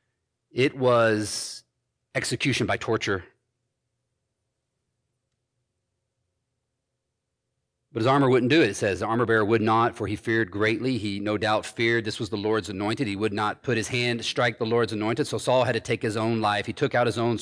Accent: American